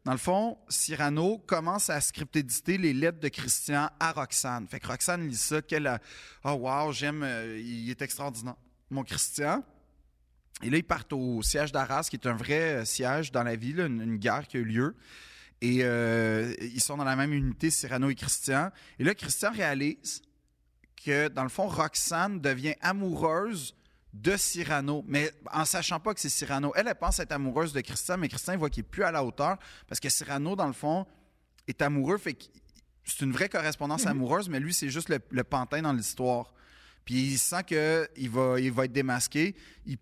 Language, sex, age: French, male, 30-49